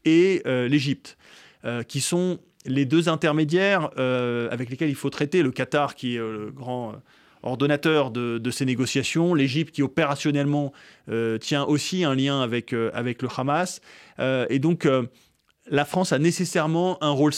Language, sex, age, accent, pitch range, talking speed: French, male, 20-39, French, 125-155 Hz, 170 wpm